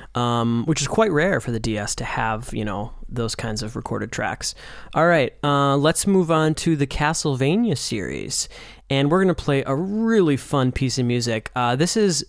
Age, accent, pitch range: 20-39, American, 120-155 Hz